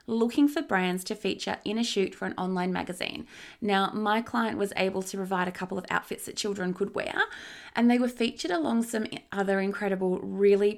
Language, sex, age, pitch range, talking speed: English, female, 20-39, 185-230 Hz, 200 wpm